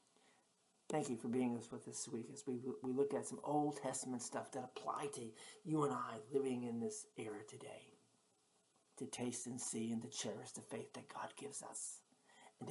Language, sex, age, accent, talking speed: English, male, 50-69, American, 200 wpm